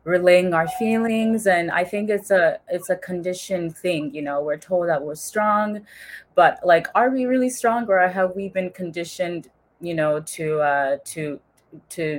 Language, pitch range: English, 155-180 Hz